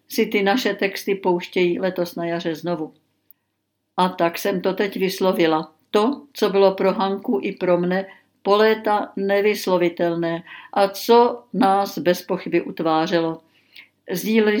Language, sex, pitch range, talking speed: Czech, female, 180-210 Hz, 130 wpm